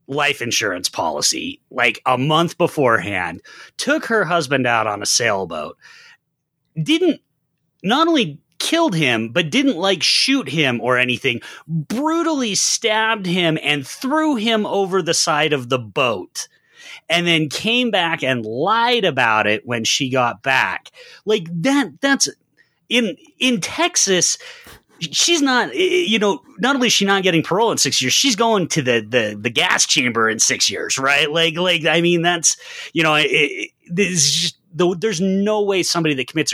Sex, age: male, 30-49